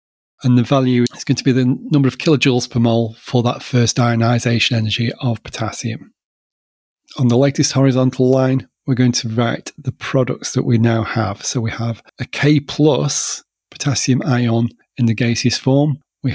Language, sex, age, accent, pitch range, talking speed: English, male, 40-59, British, 120-135 Hz, 175 wpm